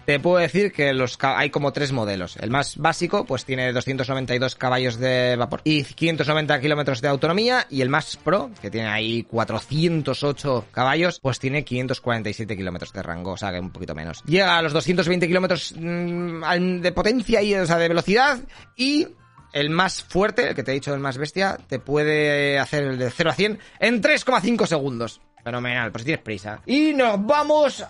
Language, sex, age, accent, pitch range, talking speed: Spanish, male, 20-39, Spanish, 130-175 Hz, 185 wpm